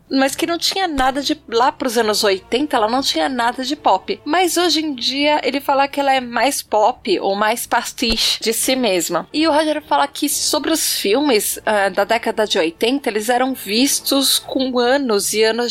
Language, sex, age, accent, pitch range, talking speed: Portuguese, female, 20-39, Brazilian, 215-275 Hz, 205 wpm